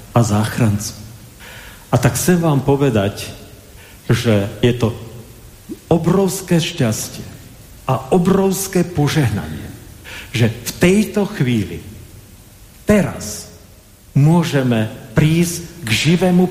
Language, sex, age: Slovak, male, 50-69